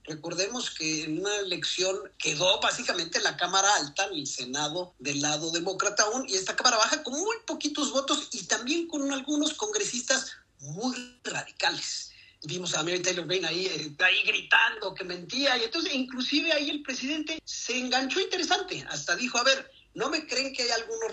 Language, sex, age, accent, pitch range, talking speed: Spanish, male, 40-59, Mexican, 185-285 Hz, 175 wpm